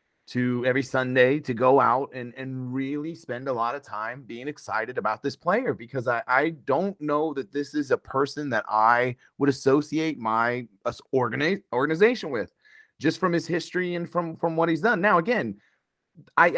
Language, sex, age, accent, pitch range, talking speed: English, male, 30-49, American, 130-190 Hz, 185 wpm